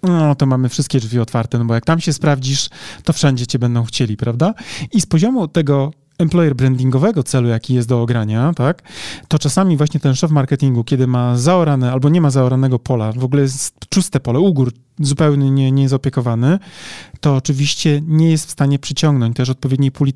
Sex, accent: male, native